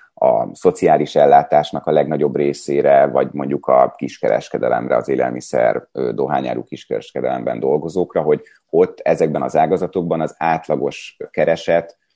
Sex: male